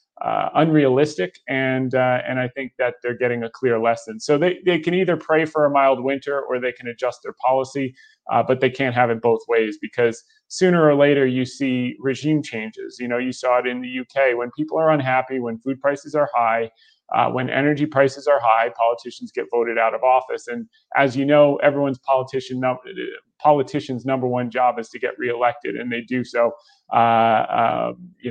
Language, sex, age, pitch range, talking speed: English, male, 30-49, 125-150 Hz, 200 wpm